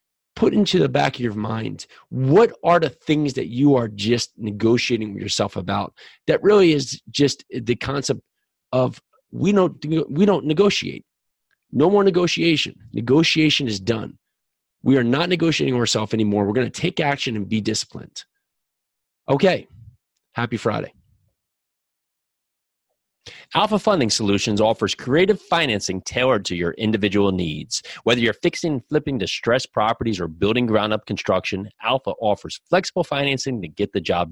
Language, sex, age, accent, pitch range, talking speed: English, male, 30-49, American, 100-145 Hz, 145 wpm